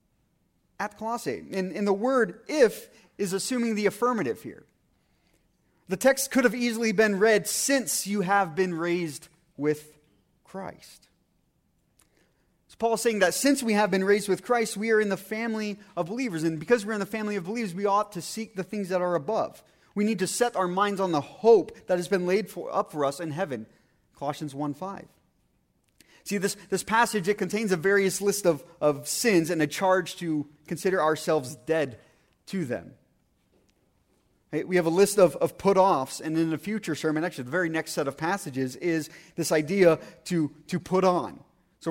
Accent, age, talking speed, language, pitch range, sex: American, 30-49, 190 wpm, English, 160-210 Hz, male